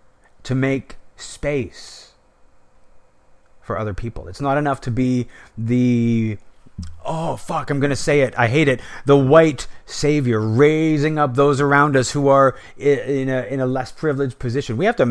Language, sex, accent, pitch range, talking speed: English, male, American, 105-135 Hz, 165 wpm